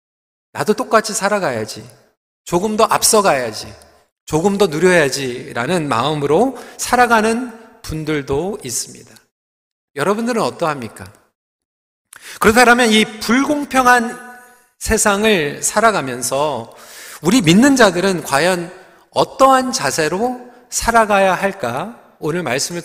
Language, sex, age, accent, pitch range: Korean, male, 40-59, native, 145-235 Hz